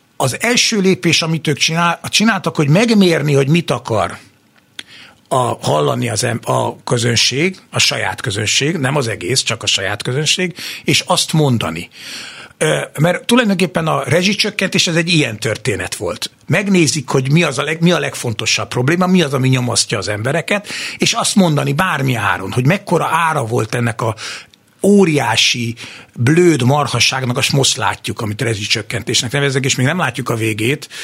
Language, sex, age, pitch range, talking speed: Hungarian, male, 60-79, 115-155 Hz, 145 wpm